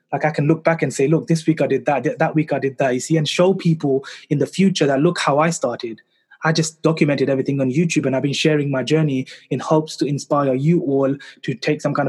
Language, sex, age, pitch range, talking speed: English, male, 20-39, 135-165 Hz, 265 wpm